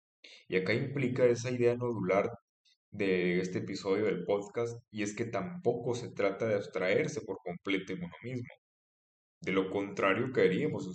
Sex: male